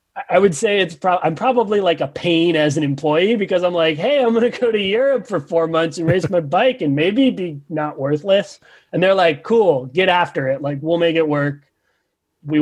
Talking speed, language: 230 wpm, English